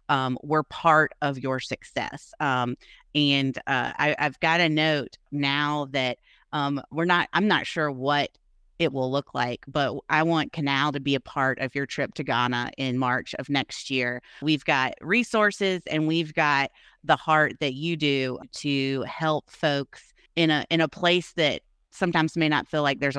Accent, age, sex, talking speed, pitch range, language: American, 30-49, female, 185 wpm, 130-155 Hz, English